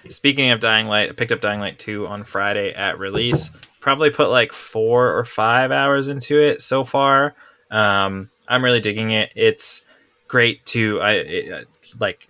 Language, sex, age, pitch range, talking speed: English, male, 20-39, 105-125 Hz, 180 wpm